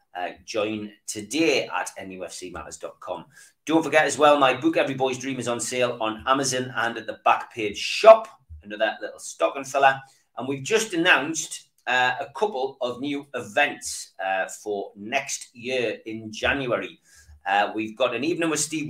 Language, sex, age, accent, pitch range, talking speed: English, male, 30-49, British, 110-150 Hz, 170 wpm